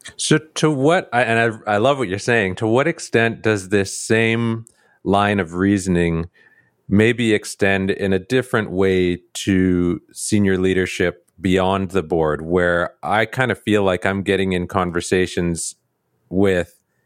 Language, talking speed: English, 145 wpm